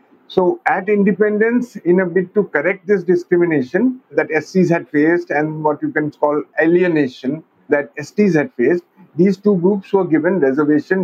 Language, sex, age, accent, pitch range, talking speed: English, male, 50-69, Indian, 150-200 Hz, 165 wpm